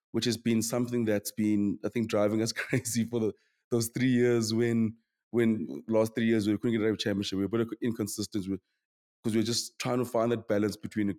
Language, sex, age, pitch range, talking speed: English, male, 20-39, 100-115 Hz, 230 wpm